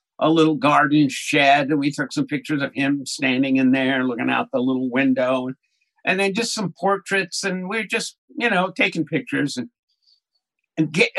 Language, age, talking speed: English, 60-79, 175 wpm